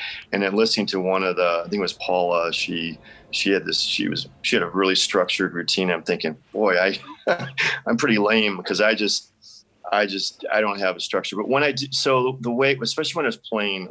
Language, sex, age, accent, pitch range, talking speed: English, male, 30-49, American, 90-105 Hz, 230 wpm